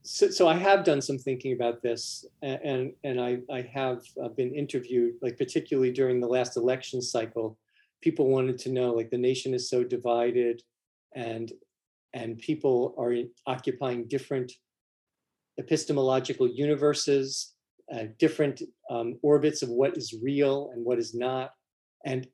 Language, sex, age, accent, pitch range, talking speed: English, male, 40-59, American, 120-150 Hz, 150 wpm